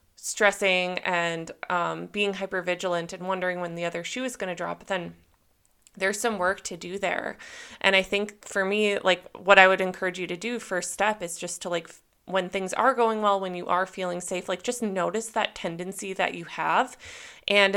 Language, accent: English, American